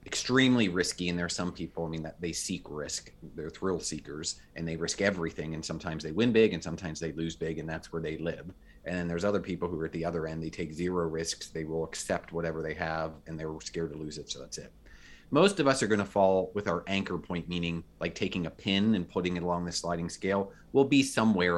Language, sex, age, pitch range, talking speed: English, male, 30-49, 80-95 Hz, 255 wpm